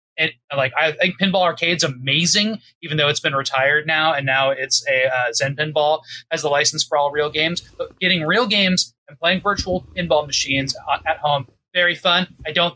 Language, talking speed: English, 200 wpm